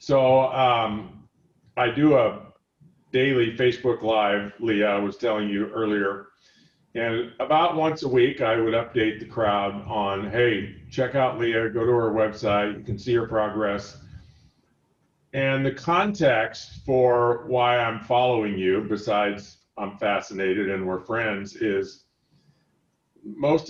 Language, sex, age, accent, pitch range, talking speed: English, male, 50-69, American, 100-125 Hz, 135 wpm